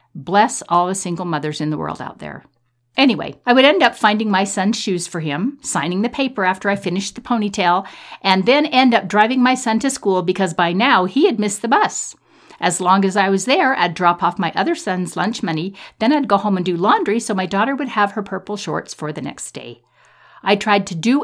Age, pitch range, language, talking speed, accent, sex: 50-69, 165-225 Hz, English, 235 wpm, American, female